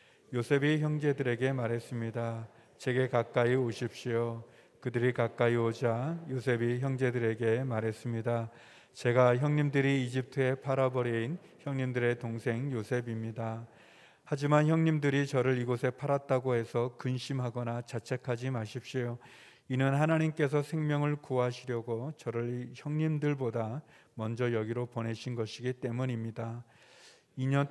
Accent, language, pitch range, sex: native, Korean, 120-140 Hz, male